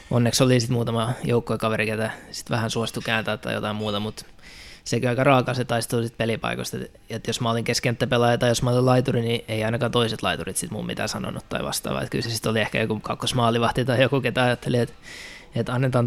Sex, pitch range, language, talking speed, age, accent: male, 110-125 Hz, Finnish, 225 wpm, 20-39, native